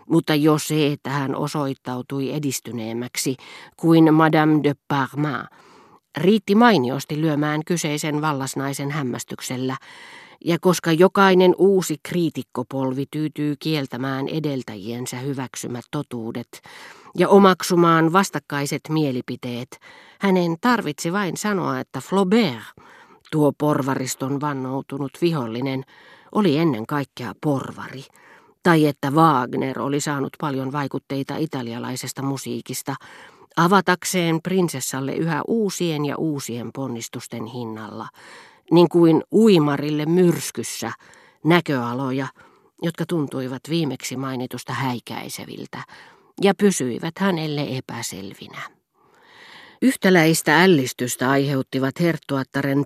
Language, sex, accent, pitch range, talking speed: Finnish, female, native, 130-165 Hz, 90 wpm